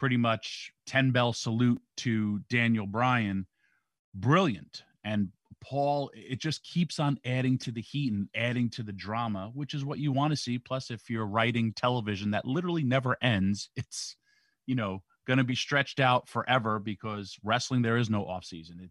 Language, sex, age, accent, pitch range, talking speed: English, male, 30-49, American, 105-130 Hz, 170 wpm